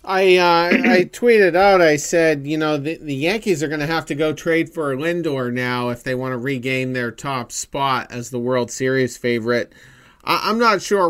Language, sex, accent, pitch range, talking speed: English, male, American, 120-145 Hz, 210 wpm